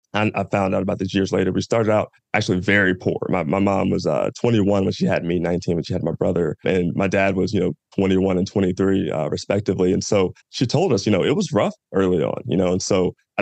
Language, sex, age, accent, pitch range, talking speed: English, male, 20-39, American, 95-100 Hz, 255 wpm